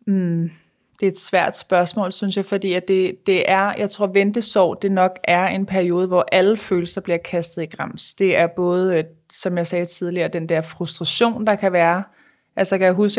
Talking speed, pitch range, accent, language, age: 215 wpm, 175-205 Hz, native, Danish, 20-39